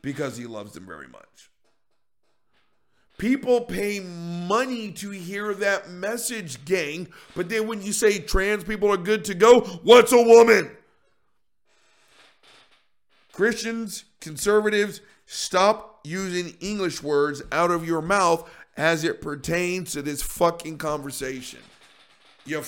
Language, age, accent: English, 50-69, American